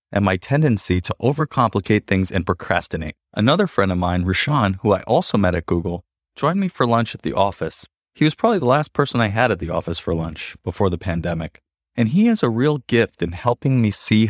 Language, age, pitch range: English, 30-49, 95-135 Hz